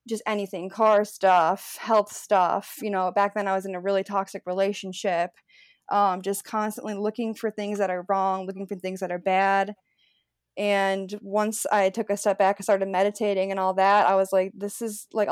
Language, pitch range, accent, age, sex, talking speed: English, 190-210 Hz, American, 20-39, female, 200 wpm